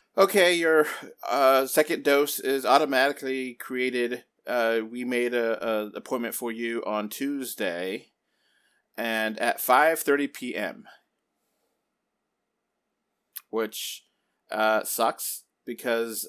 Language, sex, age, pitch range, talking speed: English, male, 30-49, 110-135 Hz, 90 wpm